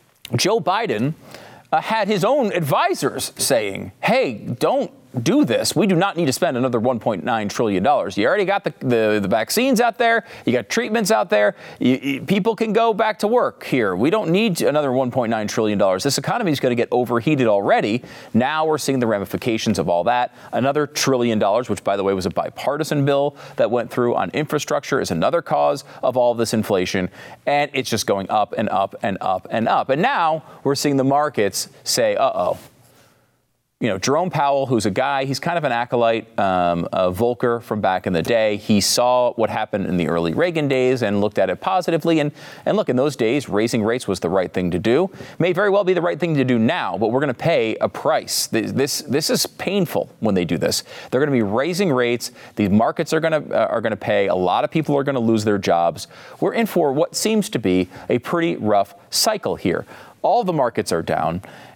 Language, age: English, 40-59